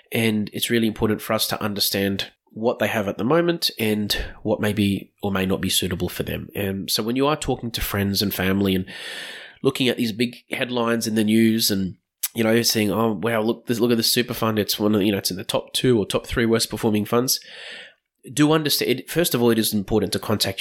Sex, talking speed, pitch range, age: male, 240 wpm, 95-115 Hz, 20-39